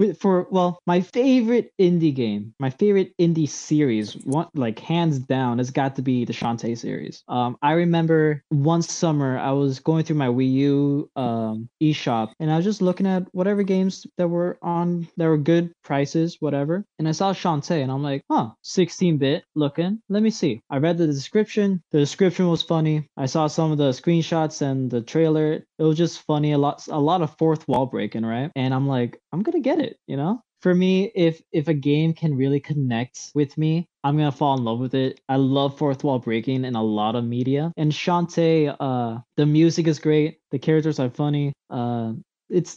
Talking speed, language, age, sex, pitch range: 205 wpm, English, 20-39, male, 135-170 Hz